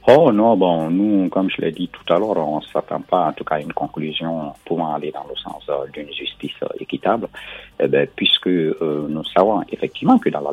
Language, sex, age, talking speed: French, male, 50-69, 235 wpm